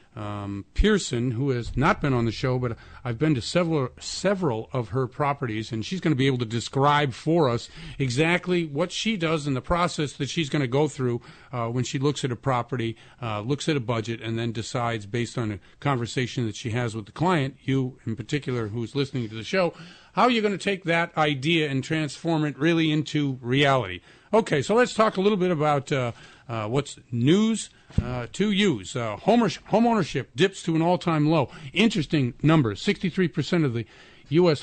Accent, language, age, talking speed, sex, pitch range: American, English, 50-69, 205 wpm, male, 120-160 Hz